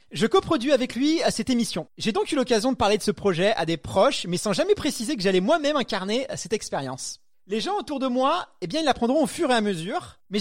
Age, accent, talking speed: 30-49, French, 250 wpm